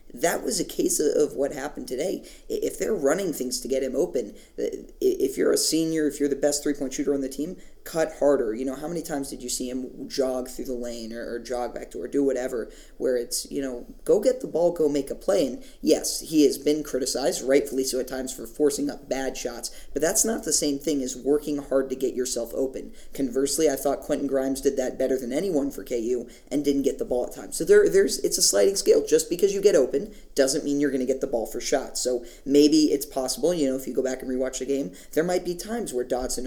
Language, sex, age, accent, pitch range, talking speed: English, male, 20-39, American, 130-165 Hz, 250 wpm